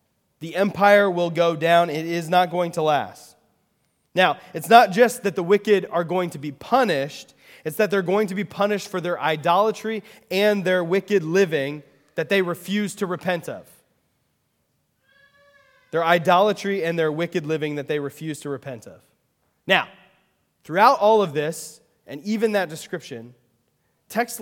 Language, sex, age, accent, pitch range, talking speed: English, male, 20-39, American, 145-195 Hz, 160 wpm